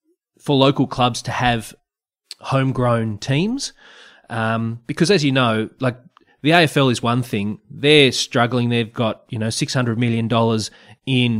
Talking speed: 145 wpm